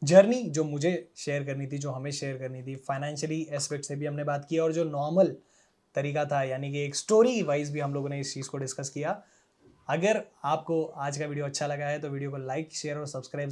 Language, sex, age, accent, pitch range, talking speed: Hindi, male, 20-39, native, 145-170 Hz, 230 wpm